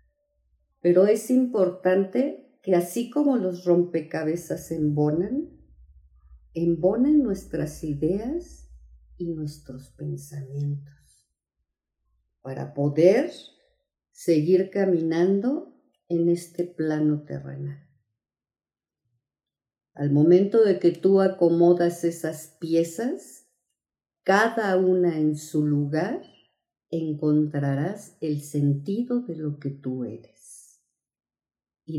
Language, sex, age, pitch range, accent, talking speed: Spanish, female, 50-69, 145-190 Hz, Mexican, 85 wpm